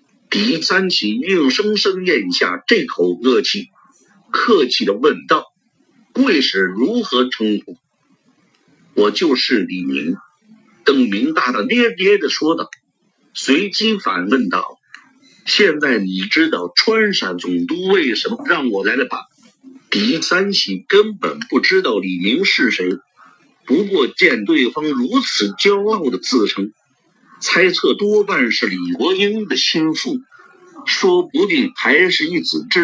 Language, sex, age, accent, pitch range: Chinese, male, 50-69, native, 185-290 Hz